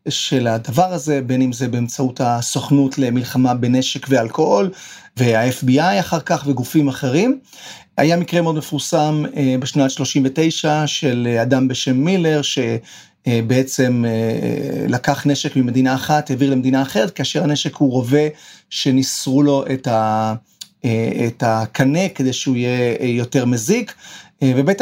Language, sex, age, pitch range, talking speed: Hebrew, male, 40-59, 130-160 Hz, 115 wpm